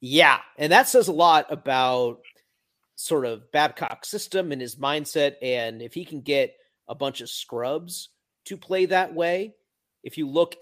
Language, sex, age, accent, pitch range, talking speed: English, male, 40-59, American, 120-155 Hz, 170 wpm